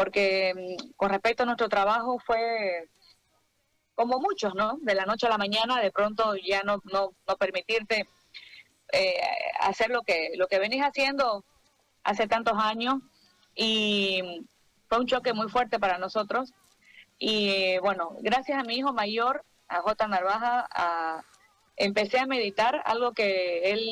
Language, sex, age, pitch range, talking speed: Spanish, female, 30-49, 195-240 Hz, 150 wpm